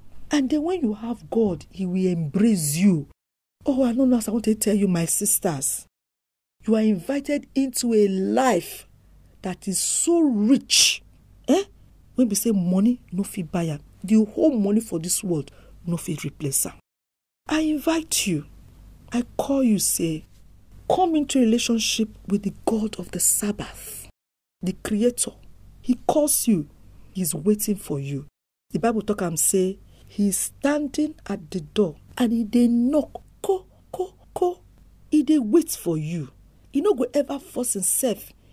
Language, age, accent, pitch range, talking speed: English, 50-69, Nigerian, 150-240 Hz, 155 wpm